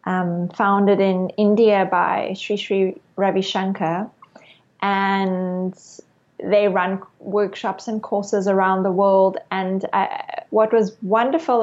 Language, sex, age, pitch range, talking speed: French, female, 20-39, 185-210 Hz, 120 wpm